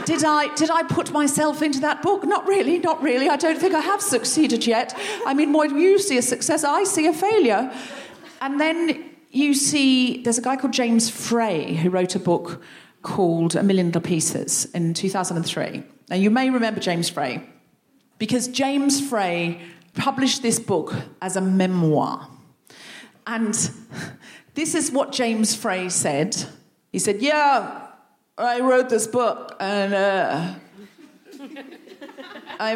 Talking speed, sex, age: 155 wpm, female, 40-59